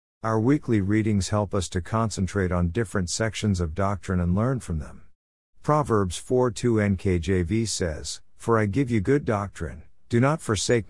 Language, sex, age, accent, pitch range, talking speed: English, male, 50-69, American, 90-115 Hz, 160 wpm